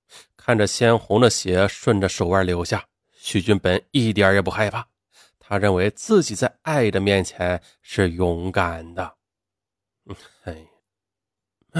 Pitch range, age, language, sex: 95-155 Hz, 30-49, Chinese, male